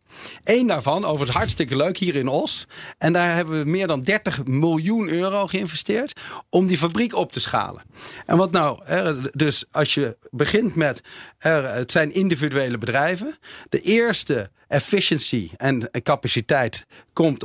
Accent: Dutch